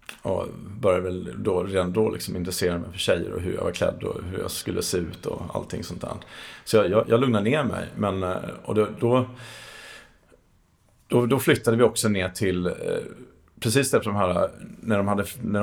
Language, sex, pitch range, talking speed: Swedish, male, 90-110 Hz, 180 wpm